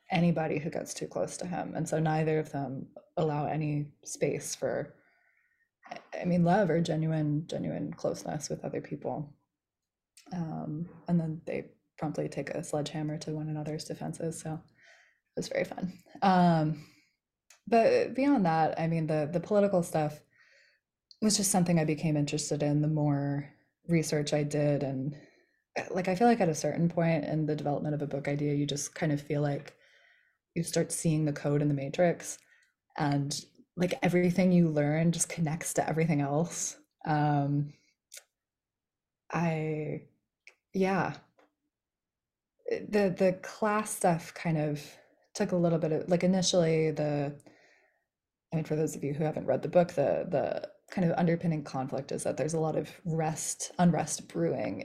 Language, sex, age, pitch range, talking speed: English, female, 20-39, 150-180 Hz, 160 wpm